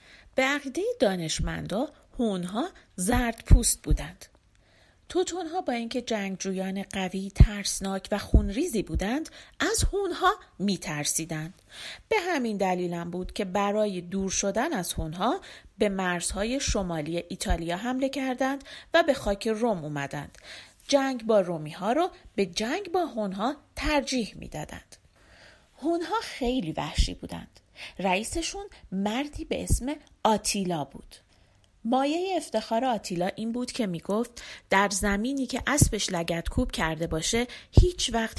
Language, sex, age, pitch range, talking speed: Persian, female, 40-59, 180-275 Hz, 120 wpm